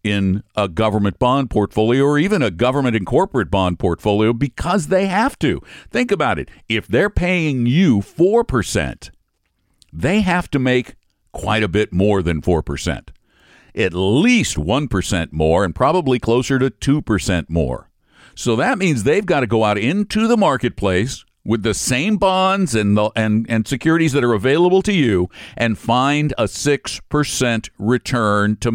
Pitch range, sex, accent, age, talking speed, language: 100-145 Hz, male, American, 60-79, 165 wpm, English